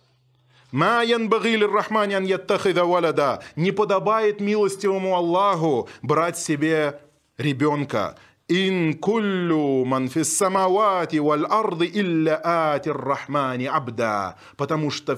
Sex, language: male, Russian